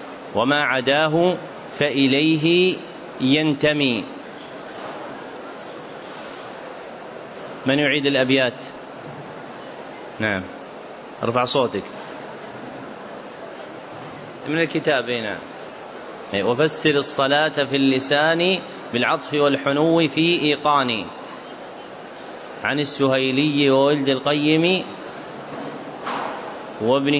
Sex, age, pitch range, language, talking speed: male, 30-49, 135-155 Hz, Arabic, 55 wpm